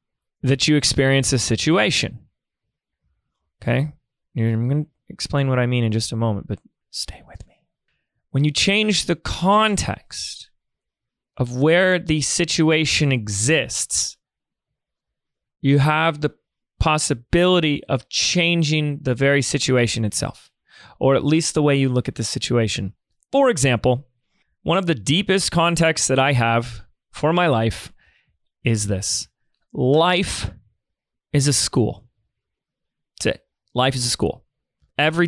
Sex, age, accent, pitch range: male, 30-49, American, 125-155 Hz